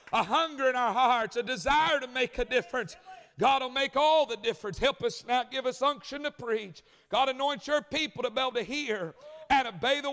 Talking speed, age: 220 wpm, 50-69